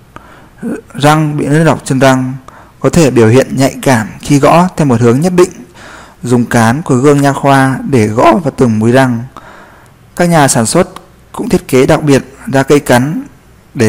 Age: 20-39